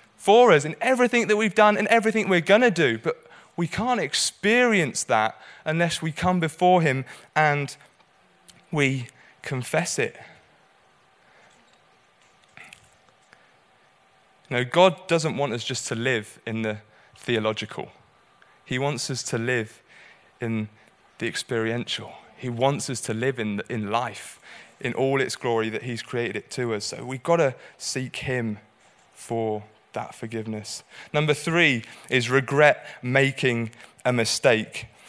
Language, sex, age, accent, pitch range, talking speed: English, male, 20-39, British, 120-155 Hz, 140 wpm